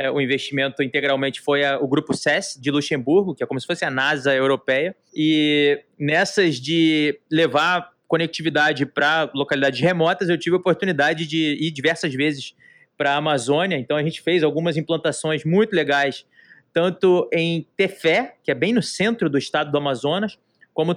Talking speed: 165 wpm